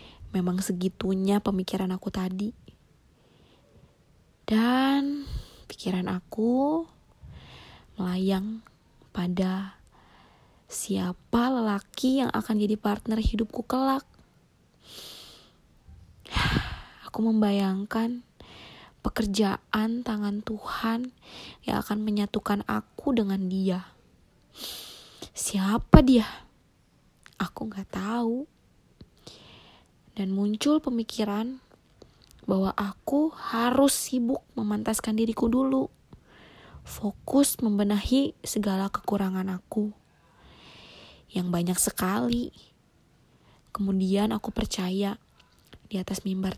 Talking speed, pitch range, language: 75 wpm, 195-240 Hz, Indonesian